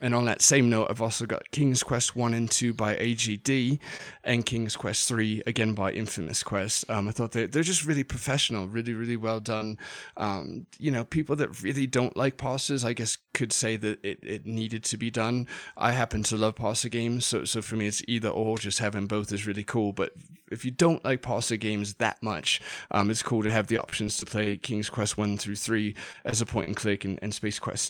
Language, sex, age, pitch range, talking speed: English, male, 30-49, 105-125 Hz, 225 wpm